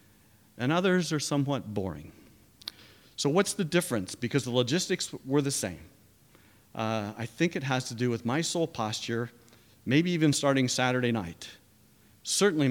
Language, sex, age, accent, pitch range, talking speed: English, male, 50-69, American, 110-130 Hz, 150 wpm